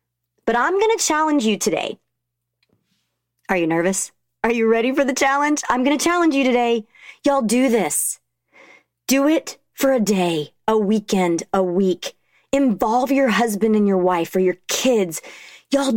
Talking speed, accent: 165 wpm, American